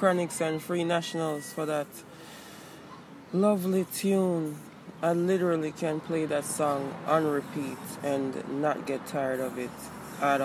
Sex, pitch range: female, 145-180 Hz